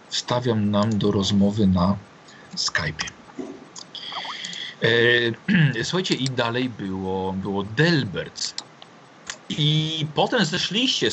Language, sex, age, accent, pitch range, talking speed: Polish, male, 40-59, native, 120-165 Hz, 85 wpm